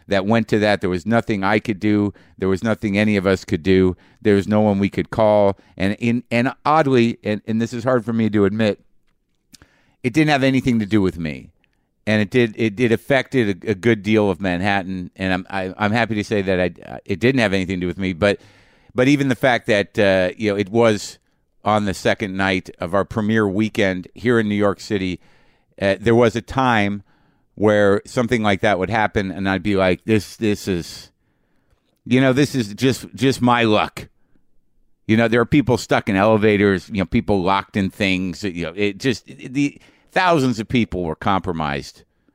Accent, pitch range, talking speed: American, 95-120 Hz, 215 wpm